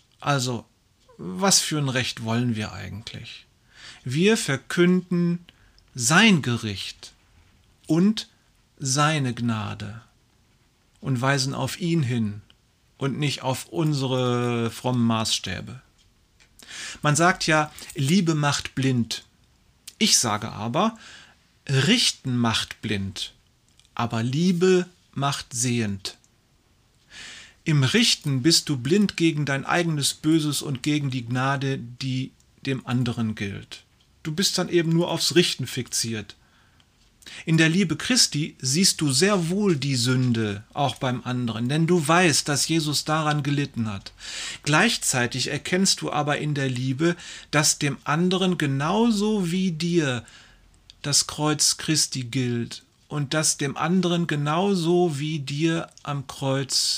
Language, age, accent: German, 40-59, German